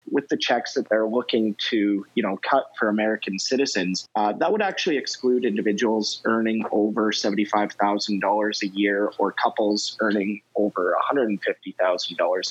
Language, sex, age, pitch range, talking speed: English, male, 30-49, 105-125 Hz, 175 wpm